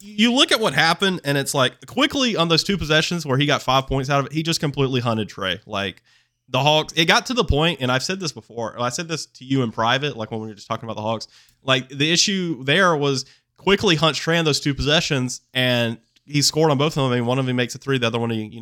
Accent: American